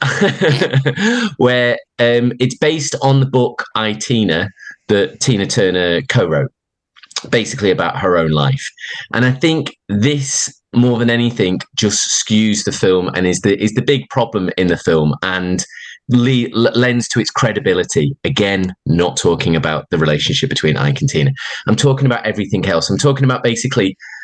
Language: English